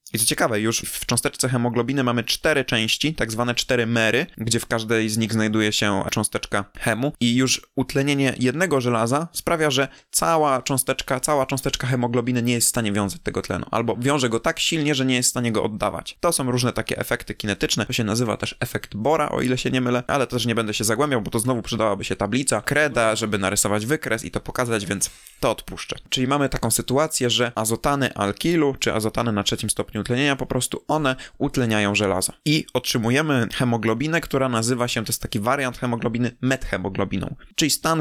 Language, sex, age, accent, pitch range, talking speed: Polish, male, 20-39, native, 110-135 Hz, 195 wpm